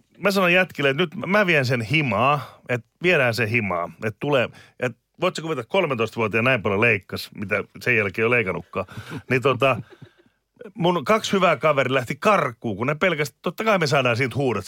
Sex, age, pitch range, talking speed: male, 30-49, 125-170 Hz, 180 wpm